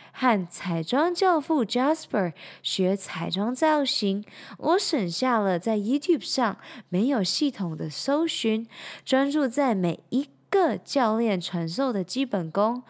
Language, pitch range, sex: Chinese, 185-280 Hz, female